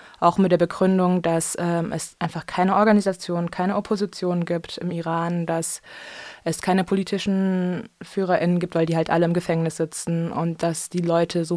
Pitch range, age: 165-180 Hz, 20-39